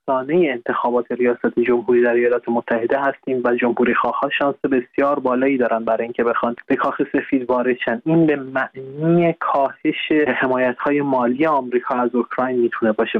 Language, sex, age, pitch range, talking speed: Persian, male, 20-39, 120-140 Hz, 140 wpm